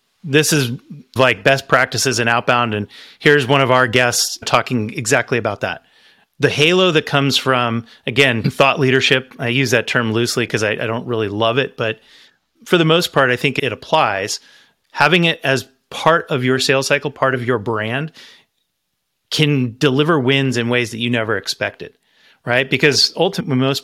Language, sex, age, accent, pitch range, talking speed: English, male, 30-49, American, 120-145 Hz, 175 wpm